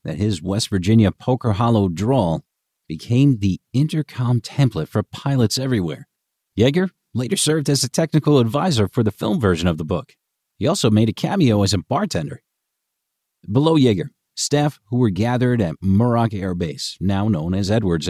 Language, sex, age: English, male, 40-59